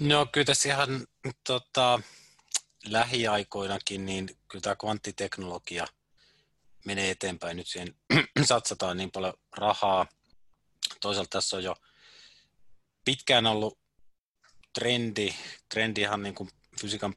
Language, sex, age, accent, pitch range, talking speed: Finnish, male, 30-49, native, 90-105 Hz, 100 wpm